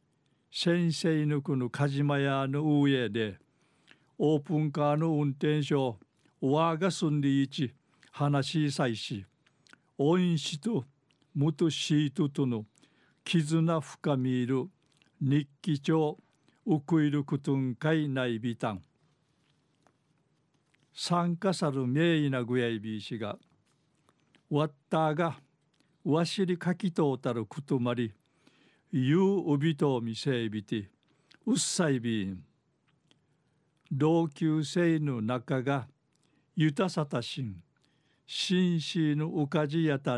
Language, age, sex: Japanese, 50-69, male